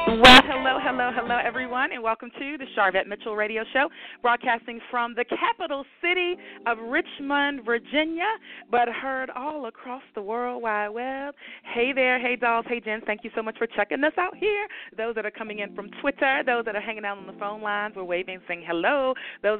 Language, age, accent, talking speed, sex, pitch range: English, 40-59, American, 200 wpm, female, 195-255 Hz